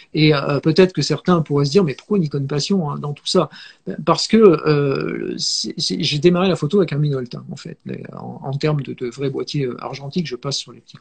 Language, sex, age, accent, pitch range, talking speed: French, male, 50-69, French, 140-180 Hz, 240 wpm